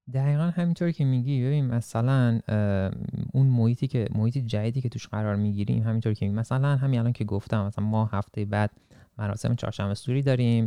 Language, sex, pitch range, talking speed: Persian, male, 105-130 Hz, 180 wpm